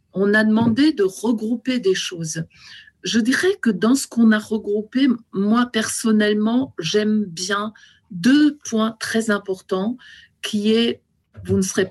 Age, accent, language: 50-69, French, French